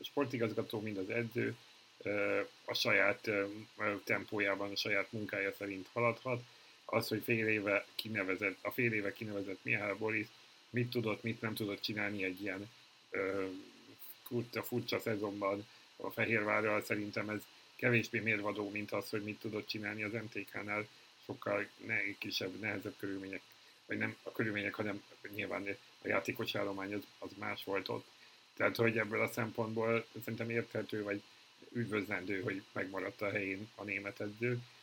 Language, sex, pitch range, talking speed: Hungarian, male, 100-115 Hz, 140 wpm